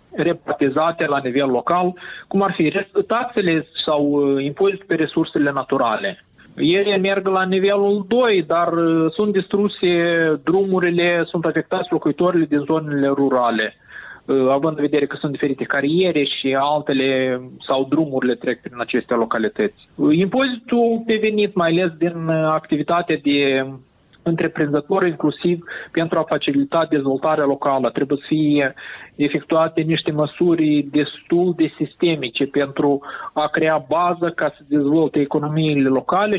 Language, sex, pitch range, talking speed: Romanian, male, 145-180 Hz, 125 wpm